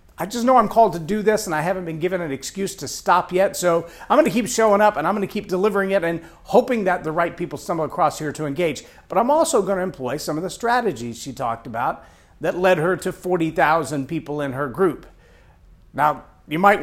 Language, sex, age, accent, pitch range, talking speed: English, male, 50-69, American, 145-190 Hz, 245 wpm